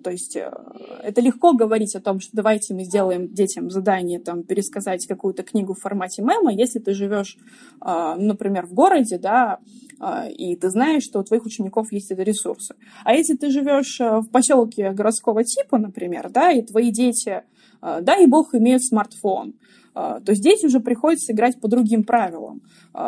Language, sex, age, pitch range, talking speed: Russian, female, 20-39, 195-255 Hz, 165 wpm